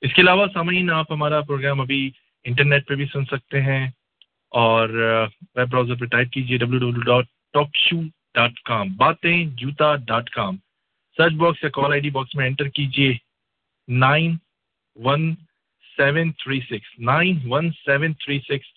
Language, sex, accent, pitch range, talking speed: English, male, Indian, 125-150 Hz, 100 wpm